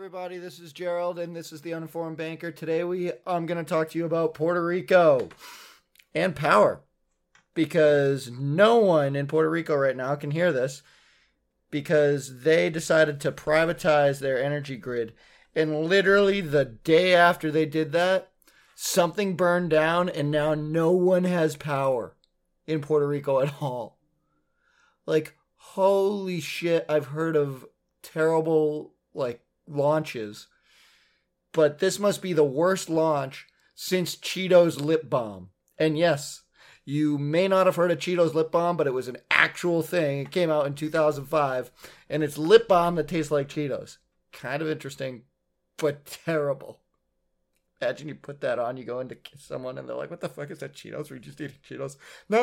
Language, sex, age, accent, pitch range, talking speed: English, male, 30-49, American, 145-175 Hz, 165 wpm